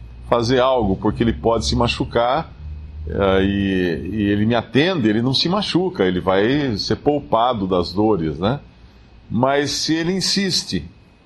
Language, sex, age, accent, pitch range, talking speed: Portuguese, male, 50-69, Brazilian, 100-135 Hz, 150 wpm